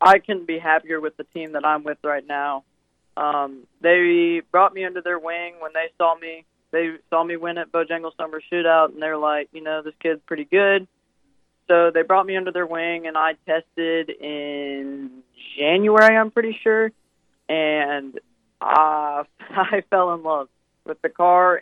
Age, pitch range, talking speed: 20-39, 150-170 Hz, 180 wpm